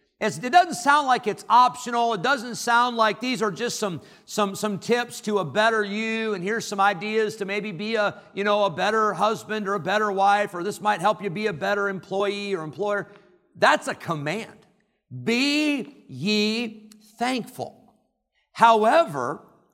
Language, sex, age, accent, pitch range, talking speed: English, male, 50-69, American, 190-235 Hz, 165 wpm